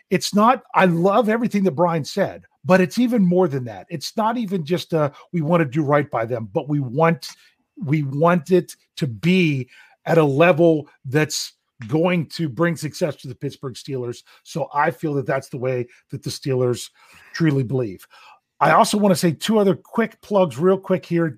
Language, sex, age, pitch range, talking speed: English, male, 40-59, 155-205 Hz, 195 wpm